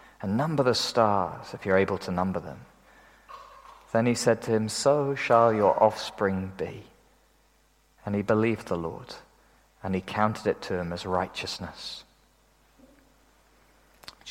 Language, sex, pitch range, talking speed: English, male, 100-120 Hz, 145 wpm